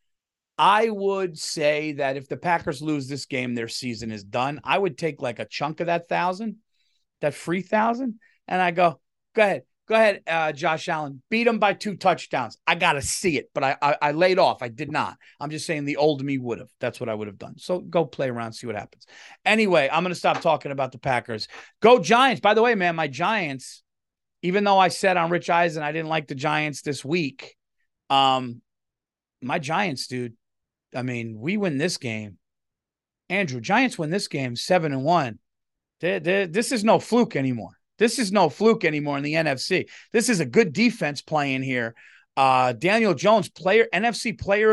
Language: English